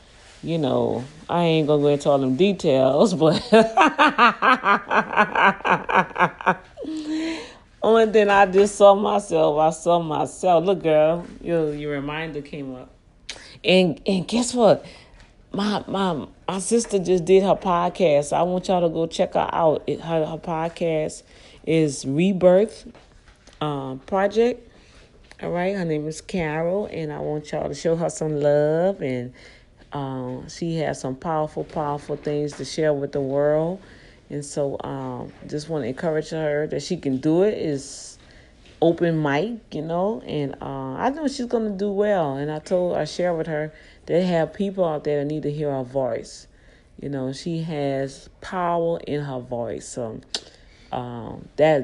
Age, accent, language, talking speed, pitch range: 40-59, American, English, 160 wpm, 145-200 Hz